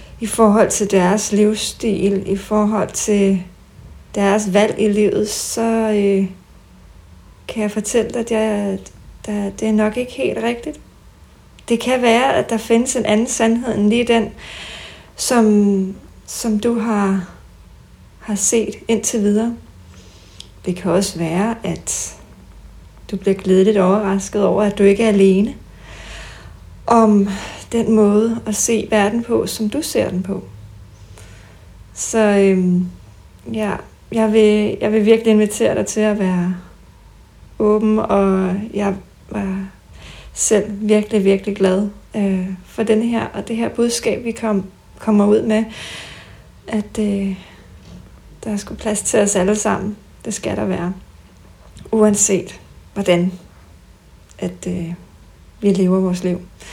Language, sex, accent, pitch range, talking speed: Danish, female, native, 185-220 Hz, 135 wpm